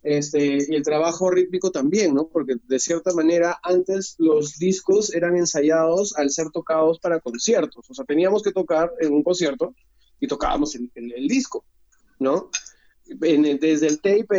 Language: Spanish